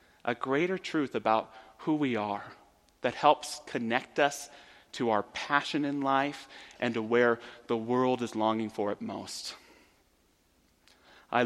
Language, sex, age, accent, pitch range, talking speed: English, male, 30-49, American, 115-150 Hz, 140 wpm